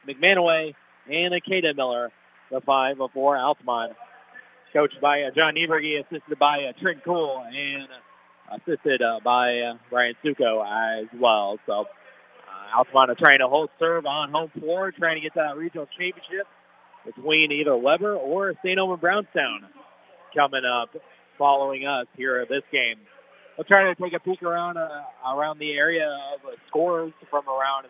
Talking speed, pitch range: 150 wpm, 130-165 Hz